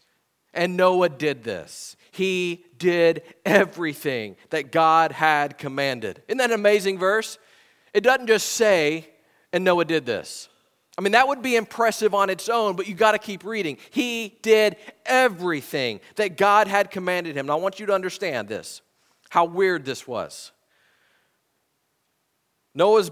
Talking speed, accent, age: 155 wpm, American, 40-59